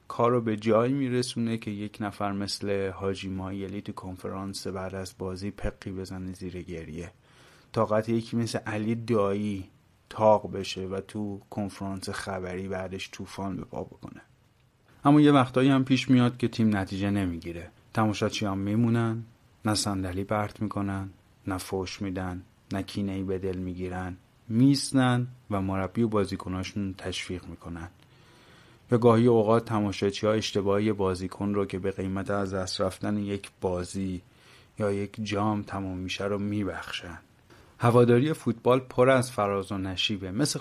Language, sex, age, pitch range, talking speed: Persian, male, 30-49, 95-115 Hz, 140 wpm